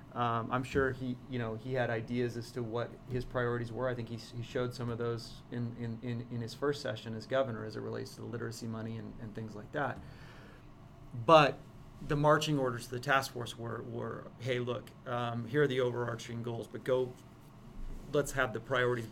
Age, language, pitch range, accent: 30-49, English, 115-130 Hz, American